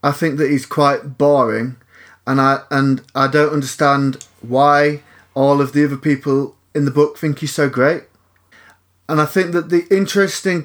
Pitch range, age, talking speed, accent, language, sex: 115-140 Hz, 30-49, 175 wpm, British, English, male